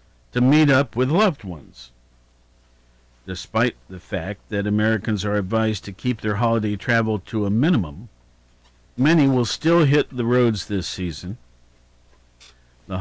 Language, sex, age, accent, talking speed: English, male, 50-69, American, 140 wpm